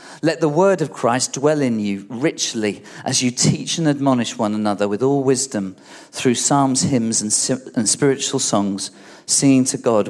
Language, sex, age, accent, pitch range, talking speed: English, male, 40-59, British, 105-145 Hz, 165 wpm